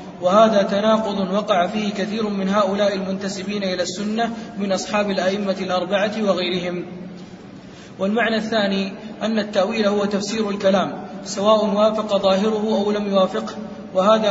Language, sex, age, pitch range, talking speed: Arabic, male, 20-39, 190-215 Hz, 120 wpm